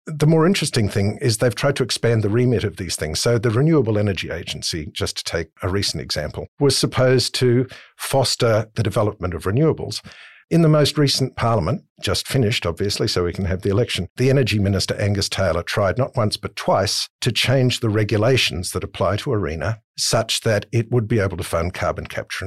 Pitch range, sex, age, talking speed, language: 100-125 Hz, male, 50-69, 200 wpm, English